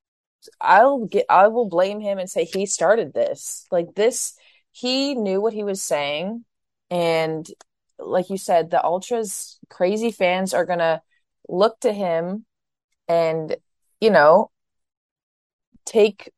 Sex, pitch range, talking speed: female, 150-200 Hz, 130 wpm